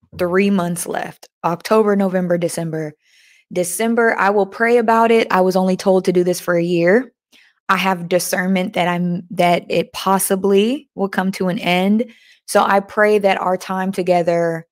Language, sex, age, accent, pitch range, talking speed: English, female, 20-39, American, 170-200 Hz, 170 wpm